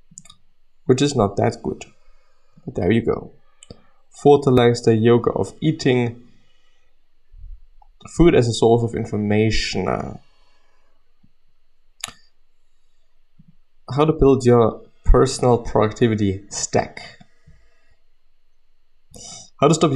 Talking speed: 85 wpm